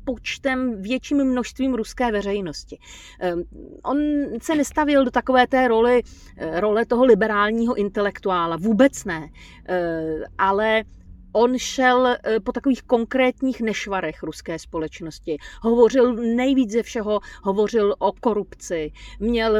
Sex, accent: female, native